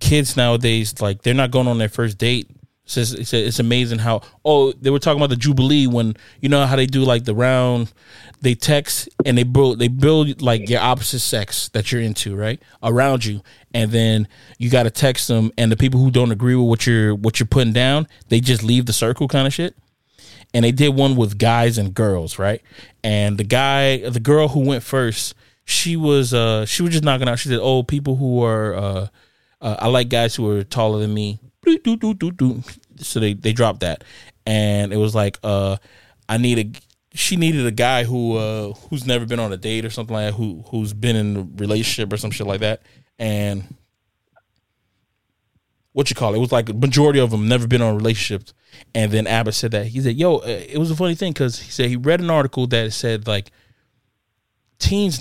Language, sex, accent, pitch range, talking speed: English, male, American, 110-130 Hz, 215 wpm